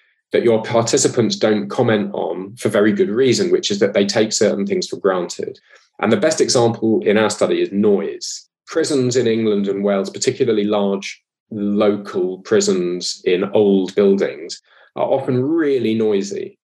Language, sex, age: English, male, 20-39